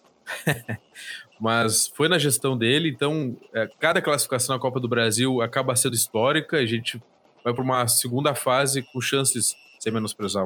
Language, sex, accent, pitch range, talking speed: Portuguese, male, Brazilian, 110-140 Hz, 150 wpm